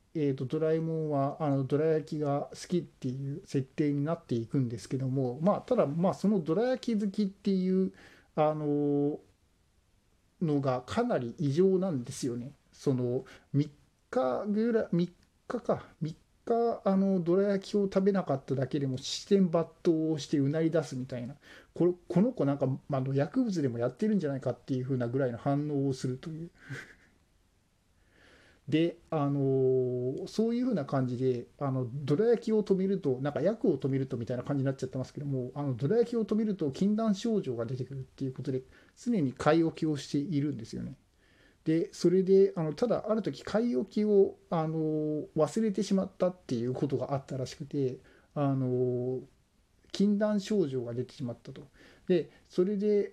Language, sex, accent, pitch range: Japanese, male, native, 130-190 Hz